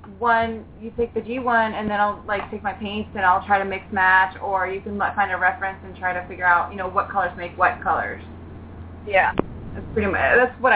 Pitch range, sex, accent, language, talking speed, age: 185-225 Hz, female, American, English, 245 wpm, 20-39